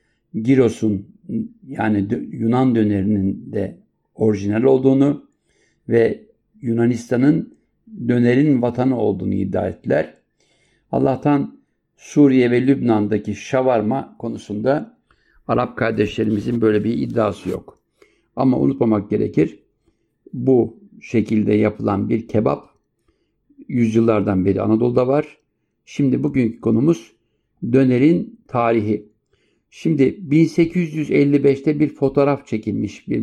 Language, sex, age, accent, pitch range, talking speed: German, male, 60-79, Turkish, 105-135 Hz, 90 wpm